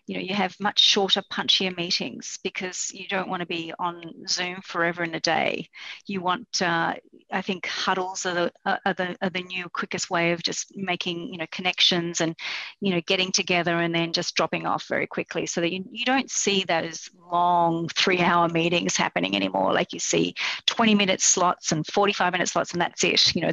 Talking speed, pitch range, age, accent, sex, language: 205 wpm, 175-215 Hz, 30-49, Australian, female, English